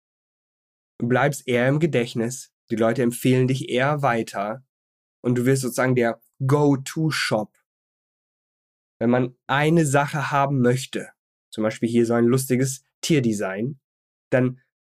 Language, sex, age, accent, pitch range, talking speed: German, male, 20-39, German, 115-135 Hz, 125 wpm